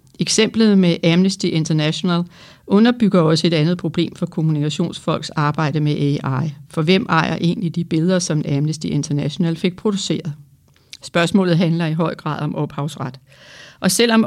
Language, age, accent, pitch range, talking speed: Danish, 60-79, native, 160-195 Hz, 145 wpm